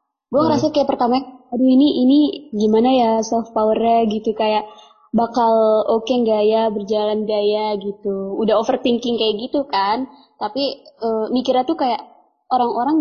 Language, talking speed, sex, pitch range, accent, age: Indonesian, 150 wpm, female, 220-265 Hz, native, 20-39